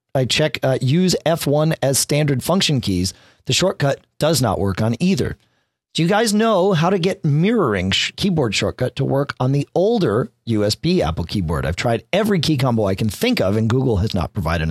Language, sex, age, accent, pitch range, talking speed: English, male, 40-59, American, 100-150 Hz, 195 wpm